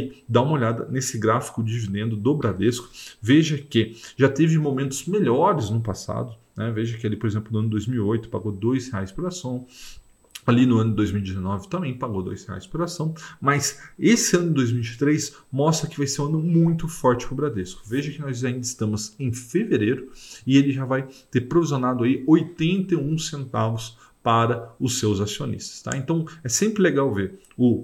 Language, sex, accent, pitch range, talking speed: Portuguese, male, Brazilian, 115-155 Hz, 180 wpm